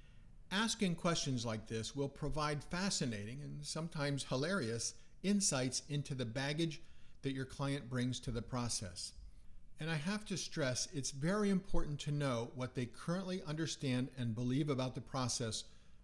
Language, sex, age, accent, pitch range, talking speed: English, male, 50-69, American, 120-155 Hz, 150 wpm